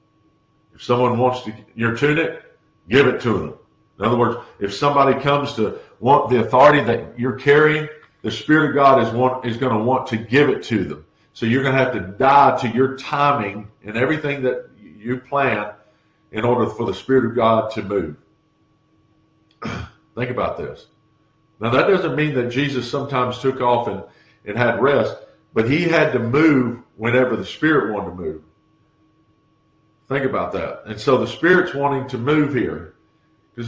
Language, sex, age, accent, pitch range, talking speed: English, male, 50-69, American, 120-145 Hz, 175 wpm